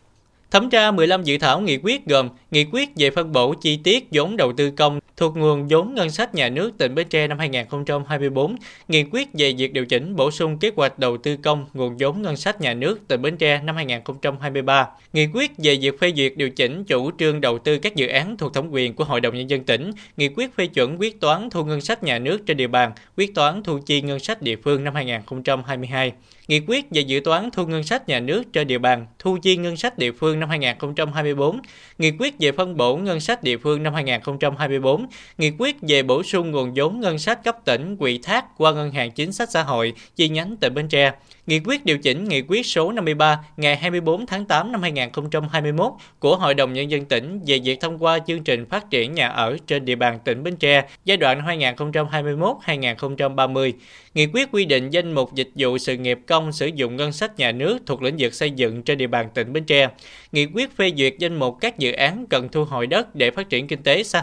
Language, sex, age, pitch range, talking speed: Vietnamese, male, 20-39, 135-170 Hz, 230 wpm